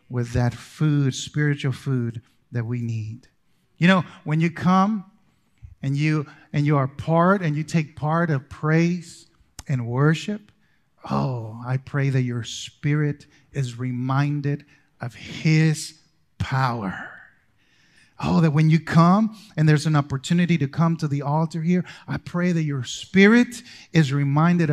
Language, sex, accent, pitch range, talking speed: English, male, American, 130-165 Hz, 145 wpm